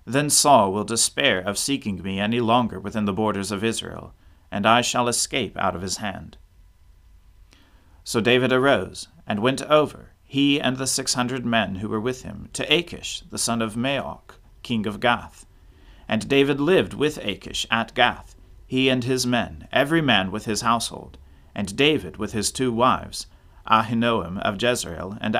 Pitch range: 90-125 Hz